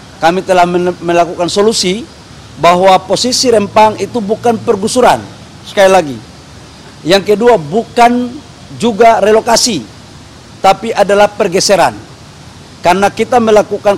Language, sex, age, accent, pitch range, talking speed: Indonesian, male, 50-69, native, 185-215 Hz, 100 wpm